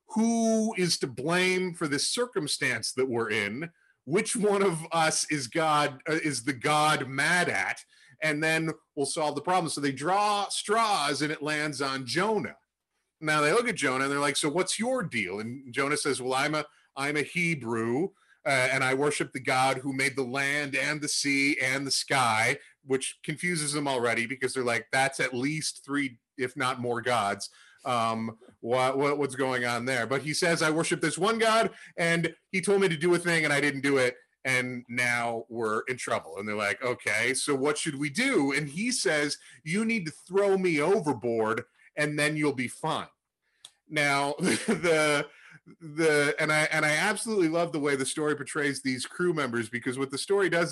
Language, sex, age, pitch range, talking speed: English, male, 40-59, 135-170 Hz, 200 wpm